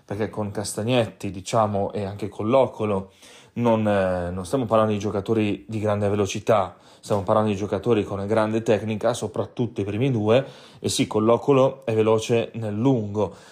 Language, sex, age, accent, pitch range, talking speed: Italian, male, 30-49, native, 105-125 Hz, 155 wpm